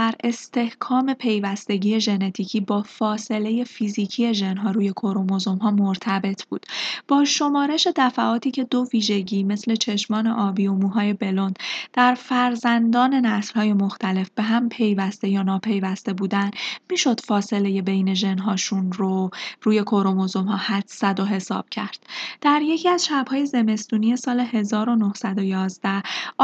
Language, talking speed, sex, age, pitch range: Persian, 125 wpm, female, 20-39, 200-240 Hz